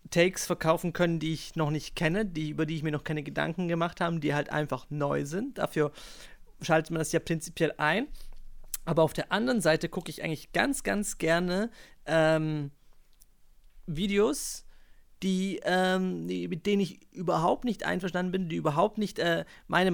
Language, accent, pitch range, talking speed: German, German, 160-195 Hz, 175 wpm